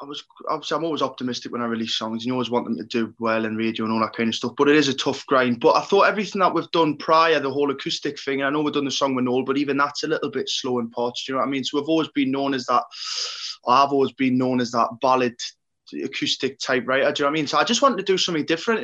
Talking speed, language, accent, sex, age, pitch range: 320 wpm, English, British, male, 20-39, 120-150 Hz